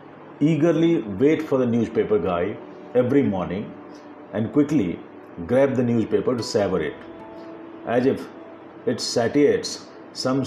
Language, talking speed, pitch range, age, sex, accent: Hindi, 120 wpm, 115-150 Hz, 50-69, male, native